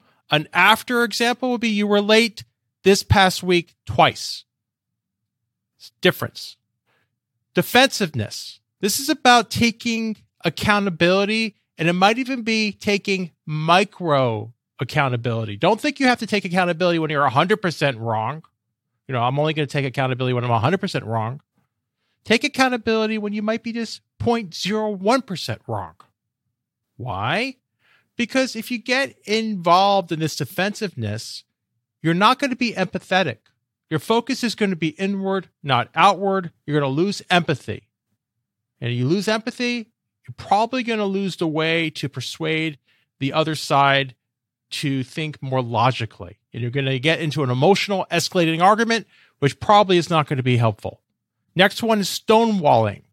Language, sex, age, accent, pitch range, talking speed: English, male, 40-59, American, 125-205 Hz, 145 wpm